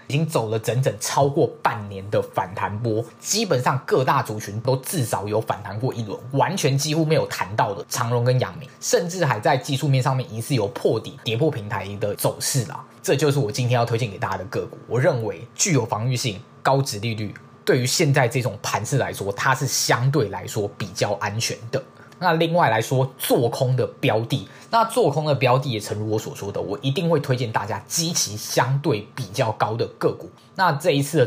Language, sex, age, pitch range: Chinese, male, 20-39, 115-145 Hz